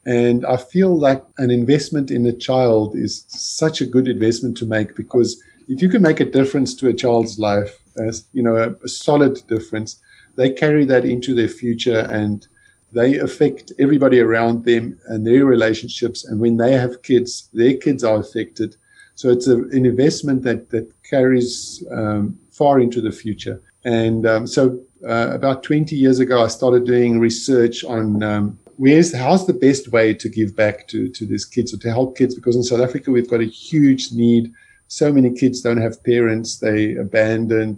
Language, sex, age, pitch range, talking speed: English, male, 50-69, 110-130 Hz, 180 wpm